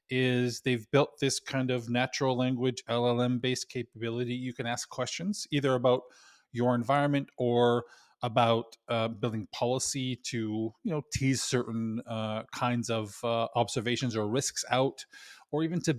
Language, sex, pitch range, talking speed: English, male, 115-130 Hz, 145 wpm